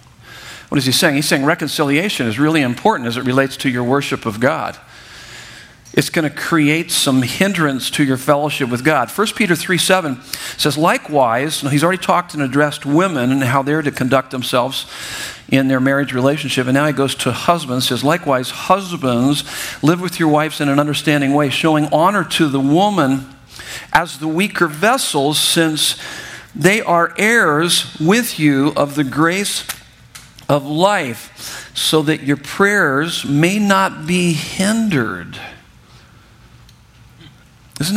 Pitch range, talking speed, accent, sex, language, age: 135-170 Hz, 155 wpm, American, male, English, 50-69